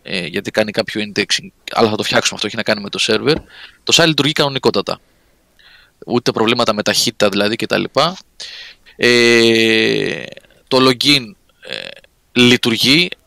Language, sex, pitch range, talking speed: Greek, male, 110-140 Hz, 145 wpm